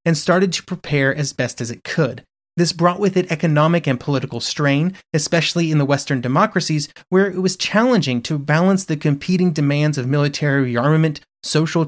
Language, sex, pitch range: English, male, 135-175 Hz